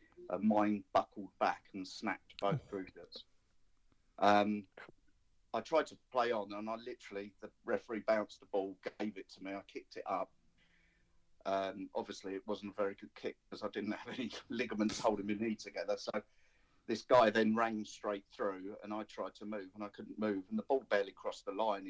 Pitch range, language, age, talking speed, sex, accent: 95-105 Hz, English, 40-59, 195 wpm, male, British